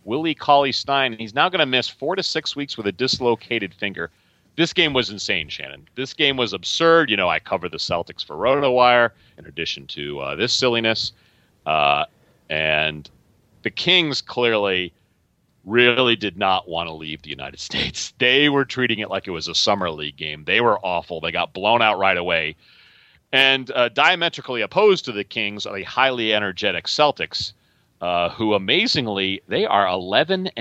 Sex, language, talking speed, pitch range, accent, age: male, English, 175 wpm, 85-125 Hz, American, 40-59